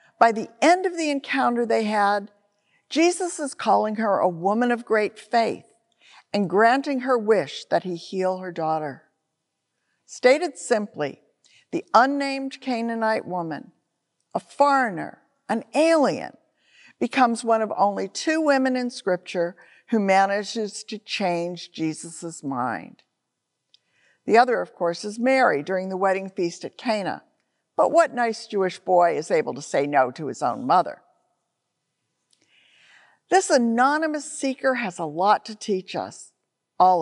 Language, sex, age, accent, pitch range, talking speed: English, female, 50-69, American, 180-250 Hz, 140 wpm